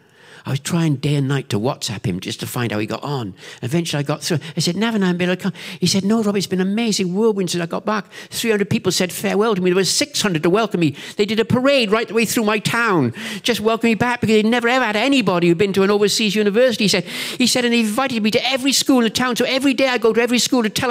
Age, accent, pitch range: 60-79, British, 165-215 Hz